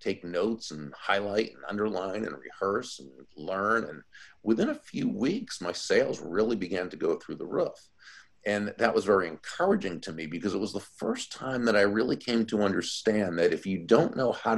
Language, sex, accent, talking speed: English, male, American, 200 wpm